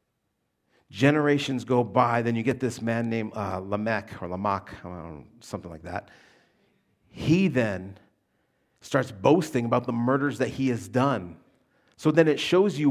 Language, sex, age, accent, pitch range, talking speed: English, male, 40-59, American, 105-130 Hz, 150 wpm